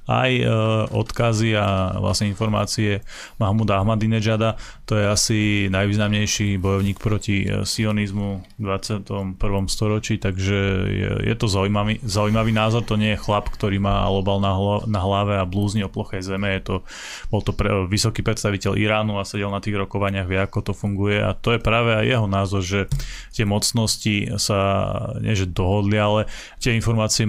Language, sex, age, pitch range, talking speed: Slovak, male, 20-39, 100-110 Hz, 165 wpm